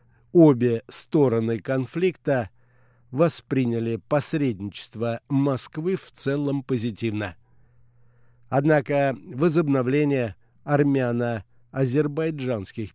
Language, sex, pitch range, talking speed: Russian, male, 120-145 Hz, 55 wpm